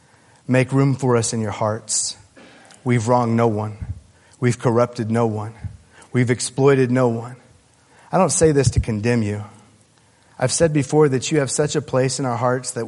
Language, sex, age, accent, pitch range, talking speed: English, male, 40-59, American, 115-140 Hz, 180 wpm